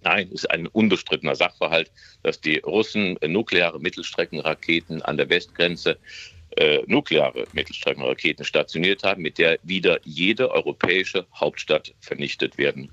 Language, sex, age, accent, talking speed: German, male, 50-69, German, 125 wpm